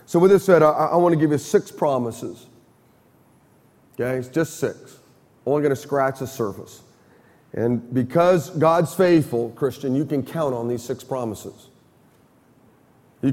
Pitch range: 135-190 Hz